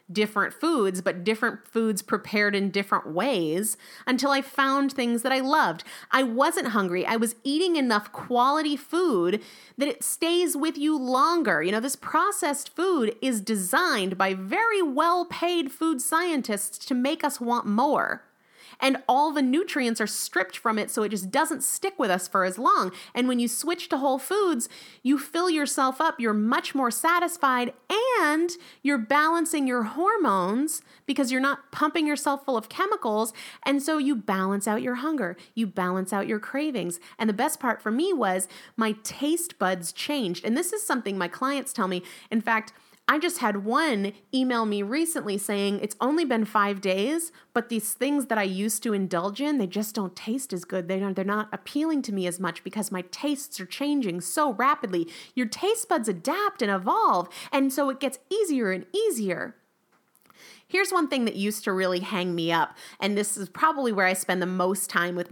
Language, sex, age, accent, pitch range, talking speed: English, female, 30-49, American, 205-295 Hz, 185 wpm